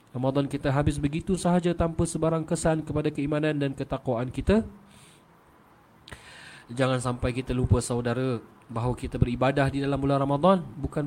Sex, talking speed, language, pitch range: male, 140 wpm, Malay, 125-150 Hz